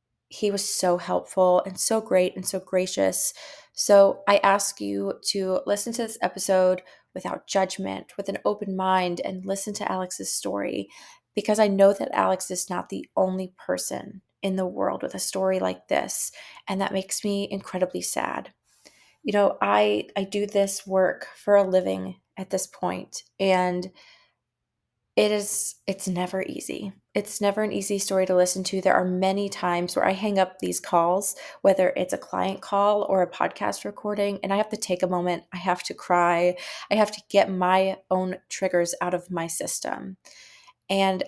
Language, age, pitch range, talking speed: English, 20-39, 180-200 Hz, 175 wpm